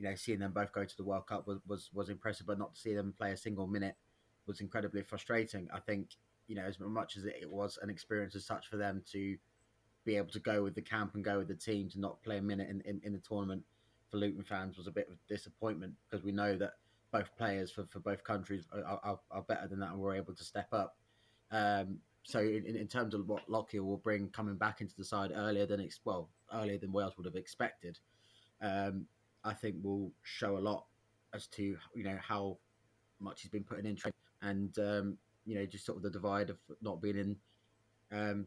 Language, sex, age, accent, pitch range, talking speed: English, male, 20-39, British, 100-110 Hz, 235 wpm